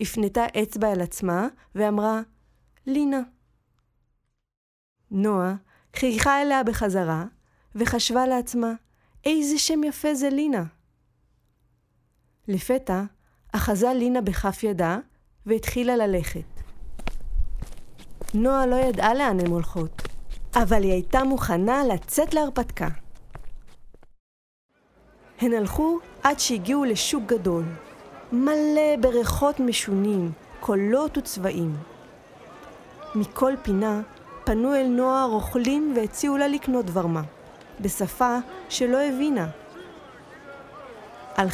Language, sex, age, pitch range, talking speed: Hebrew, female, 30-49, 200-270 Hz, 90 wpm